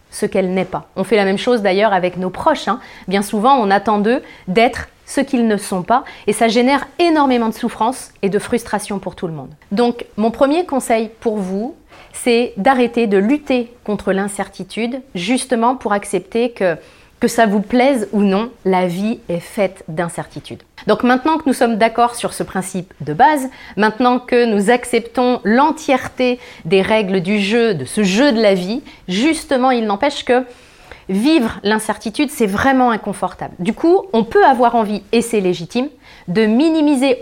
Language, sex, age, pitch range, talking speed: French, female, 30-49, 200-260 Hz, 180 wpm